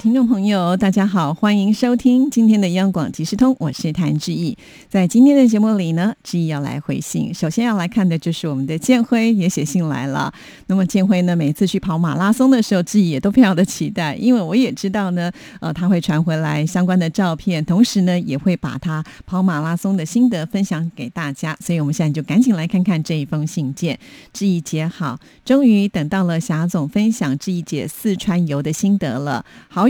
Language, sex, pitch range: Korean, female, 165-210 Hz